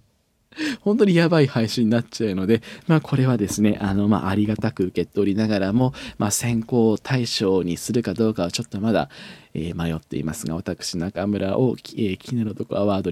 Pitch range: 90-120 Hz